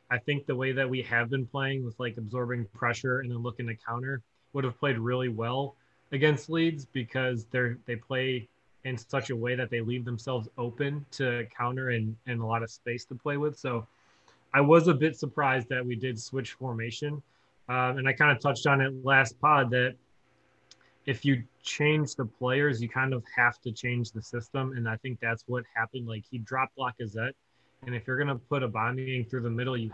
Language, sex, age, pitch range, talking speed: English, male, 20-39, 120-135 Hz, 210 wpm